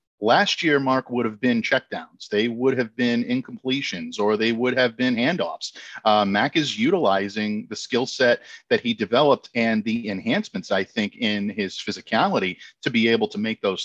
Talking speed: 180 wpm